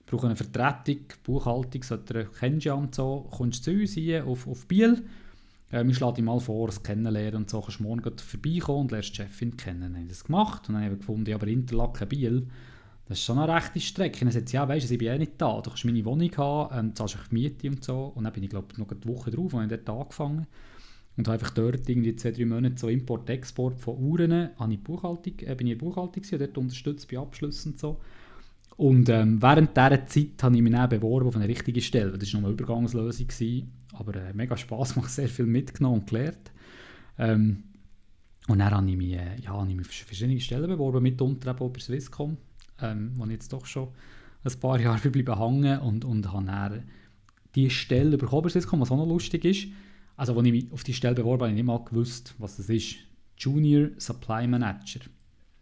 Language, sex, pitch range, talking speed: German, male, 110-140 Hz, 225 wpm